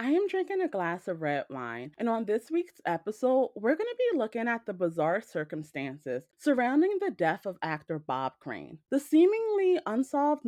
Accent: American